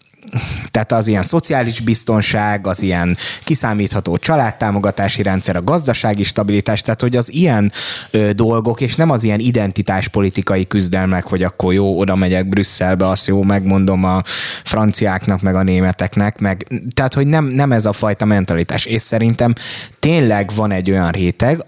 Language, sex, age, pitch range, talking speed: Hungarian, male, 20-39, 95-120 Hz, 145 wpm